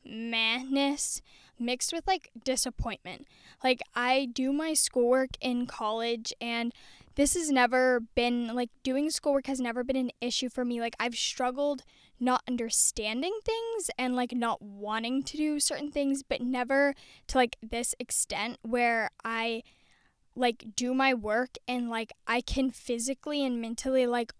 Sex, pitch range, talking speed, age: female, 230-260 Hz, 150 wpm, 10-29